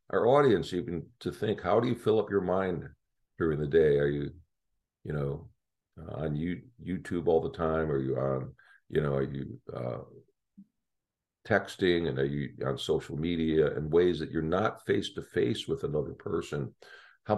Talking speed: 185 wpm